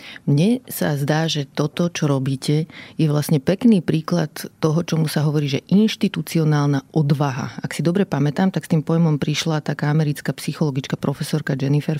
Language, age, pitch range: Slovak, 30-49, 150-180 Hz